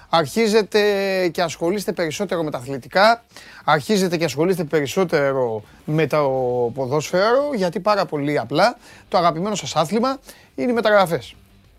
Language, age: Greek, 30-49